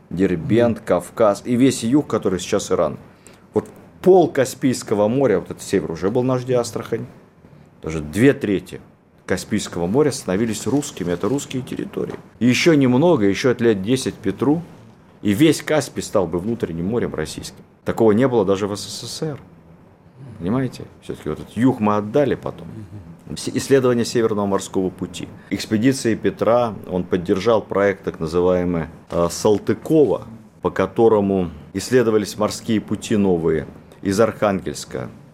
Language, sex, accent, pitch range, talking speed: Russian, male, native, 90-115 Hz, 135 wpm